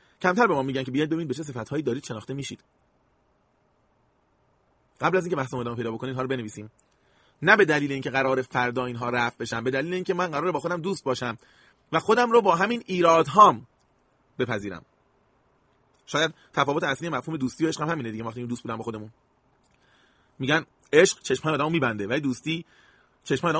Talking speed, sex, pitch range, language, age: 185 wpm, male, 130-185 Hz, Persian, 30-49